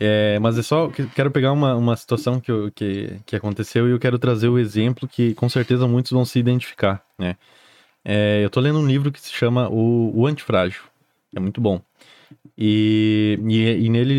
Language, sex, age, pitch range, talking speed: Portuguese, male, 20-39, 105-135 Hz, 200 wpm